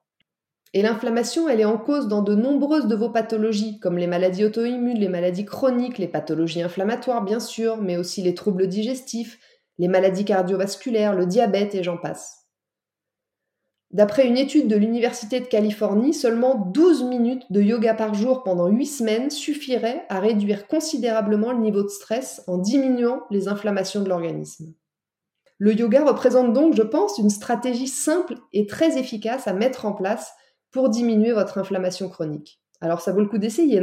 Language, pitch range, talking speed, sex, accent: French, 195-250 Hz, 170 wpm, female, French